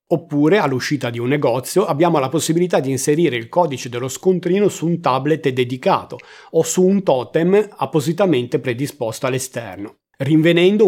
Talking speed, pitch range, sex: 145 wpm, 130-180 Hz, male